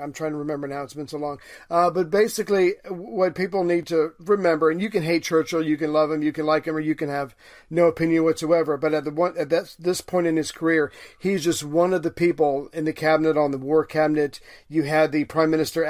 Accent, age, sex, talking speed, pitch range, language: American, 40-59, male, 240 wpm, 150-170 Hz, English